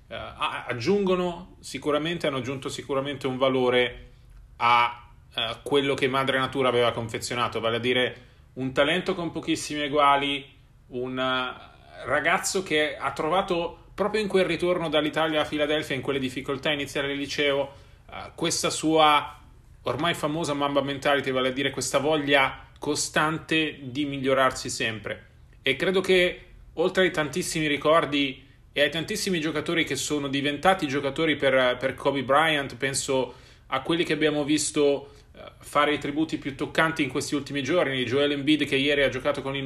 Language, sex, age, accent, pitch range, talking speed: Italian, male, 30-49, native, 135-155 Hz, 155 wpm